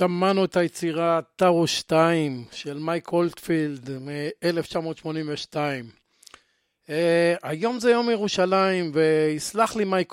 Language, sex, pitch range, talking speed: Hebrew, male, 155-180 Hz, 100 wpm